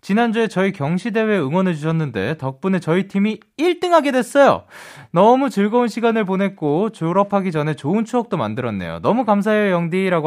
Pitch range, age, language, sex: 150-225 Hz, 20-39, Korean, male